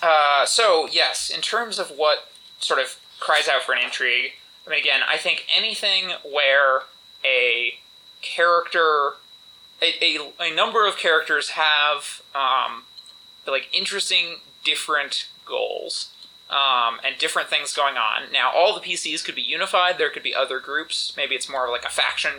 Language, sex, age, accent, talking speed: English, male, 20-39, American, 160 wpm